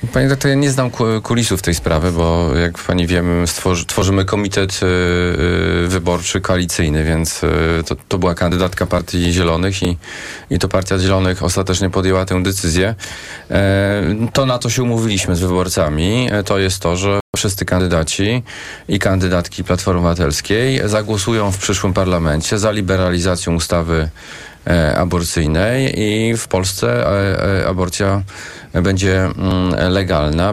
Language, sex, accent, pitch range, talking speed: Polish, male, native, 90-105 Hz, 125 wpm